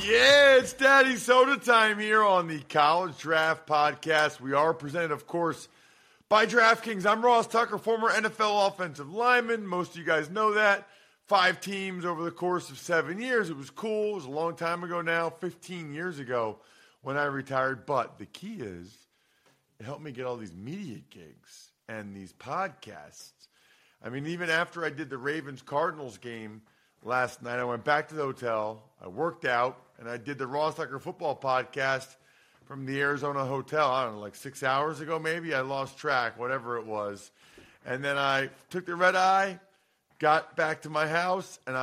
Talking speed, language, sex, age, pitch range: 185 wpm, English, male, 40-59, 125-180 Hz